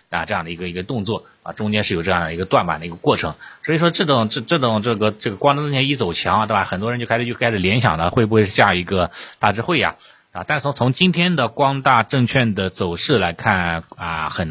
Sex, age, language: male, 30-49, Chinese